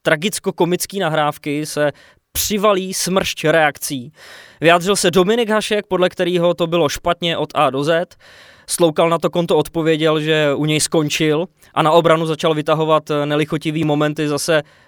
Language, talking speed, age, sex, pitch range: English, 145 wpm, 20-39, male, 150-200 Hz